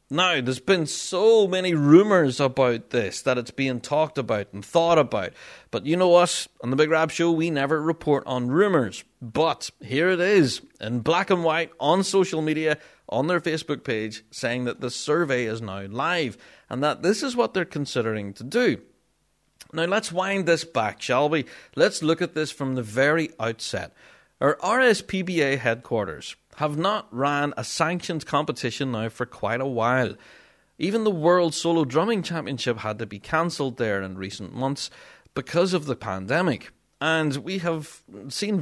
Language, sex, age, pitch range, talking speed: English, male, 30-49, 125-170 Hz, 175 wpm